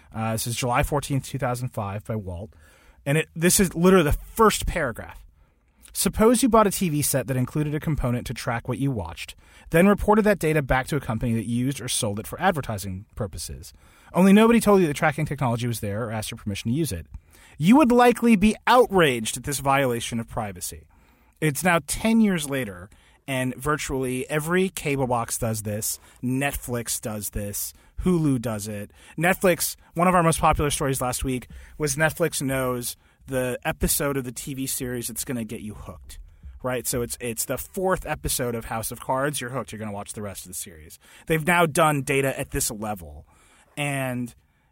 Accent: American